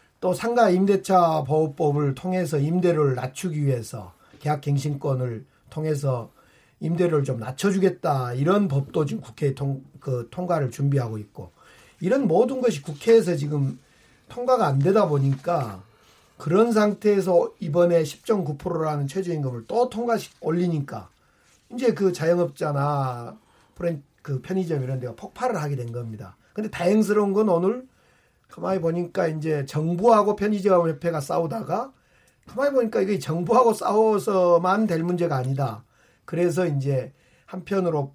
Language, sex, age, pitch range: Korean, male, 40-59, 135-190 Hz